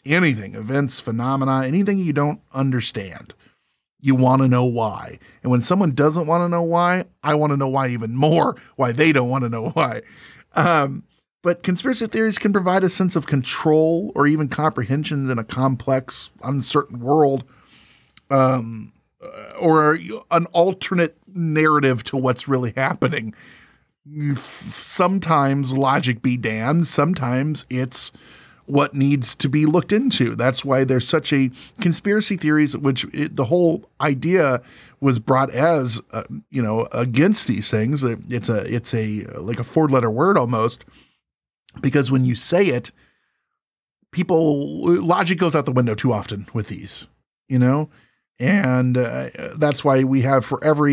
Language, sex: English, male